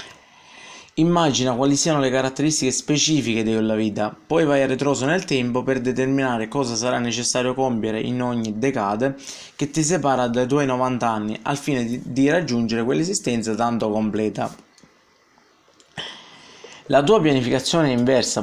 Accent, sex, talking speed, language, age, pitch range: native, male, 140 wpm, Italian, 20-39, 115-140 Hz